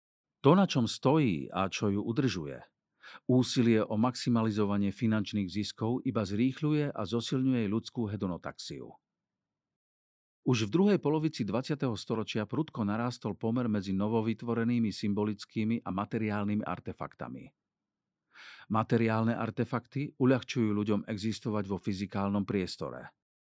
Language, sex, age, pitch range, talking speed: Slovak, male, 50-69, 105-130 Hz, 105 wpm